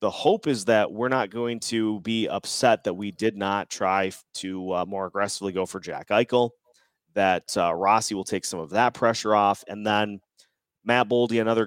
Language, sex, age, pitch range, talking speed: English, male, 30-49, 100-120 Hz, 195 wpm